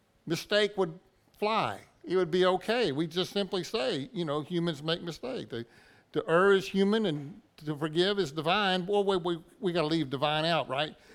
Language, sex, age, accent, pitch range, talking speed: English, male, 60-79, American, 150-185 Hz, 190 wpm